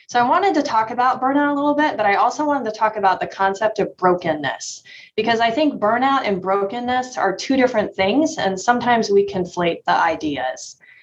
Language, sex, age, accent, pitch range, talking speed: English, female, 20-39, American, 190-245 Hz, 200 wpm